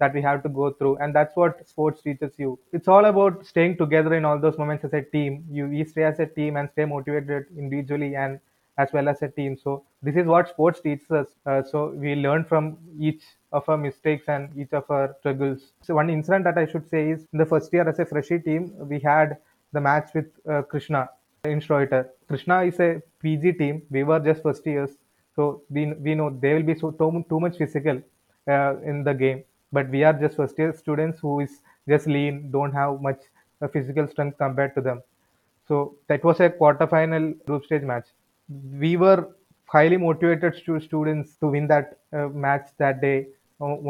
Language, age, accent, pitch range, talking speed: English, 20-39, Indian, 140-160 Hz, 210 wpm